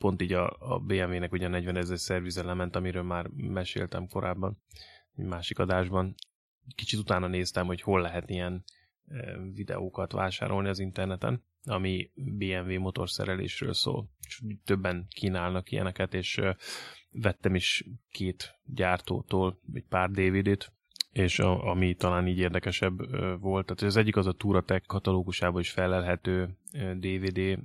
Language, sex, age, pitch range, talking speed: Hungarian, male, 20-39, 90-100 Hz, 130 wpm